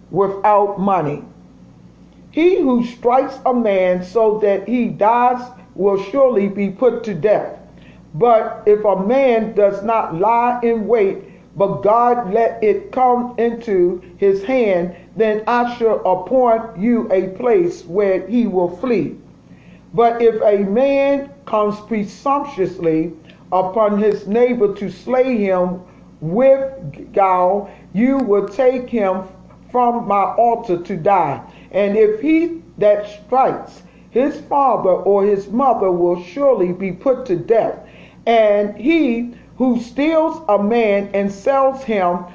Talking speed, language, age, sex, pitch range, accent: 130 wpm, English, 50-69, male, 195-250 Hz, American